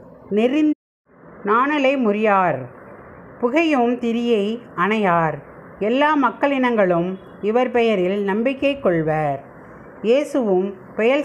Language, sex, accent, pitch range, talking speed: Tamil, female, native, 185-270 Hz, 75 wpm